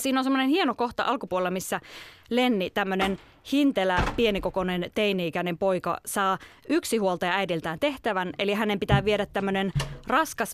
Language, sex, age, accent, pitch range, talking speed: Finnish, female, 20-39, native, 175-225 Hz, 140 wpm